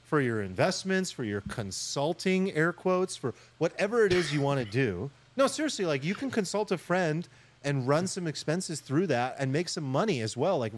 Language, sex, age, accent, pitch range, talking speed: English, male, 30-49, American, 120-170 Hz, 200 wpm